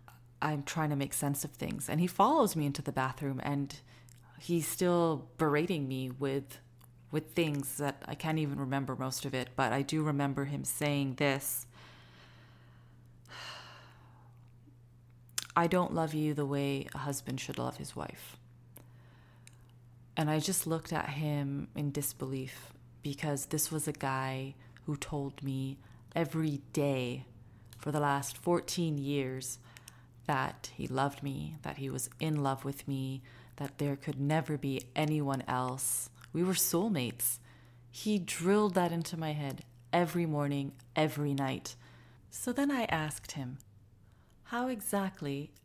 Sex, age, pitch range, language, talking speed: female, 30-49, 125-155 Hz, English, 145 wpm